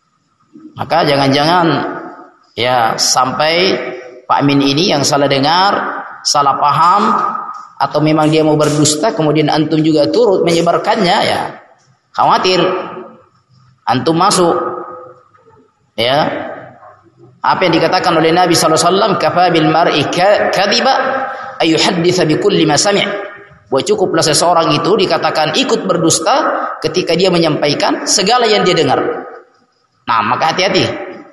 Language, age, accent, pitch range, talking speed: Indonesian, 30-49, native, 140-180 Hz, 115 wpm